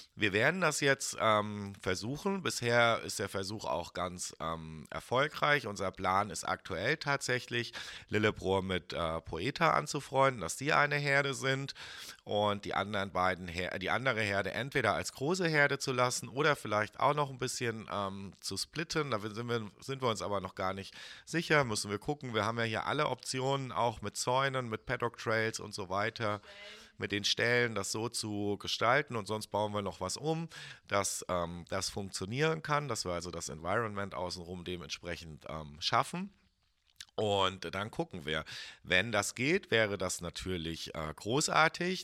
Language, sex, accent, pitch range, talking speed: German, male, German, 95-130 Hz, 170 wpm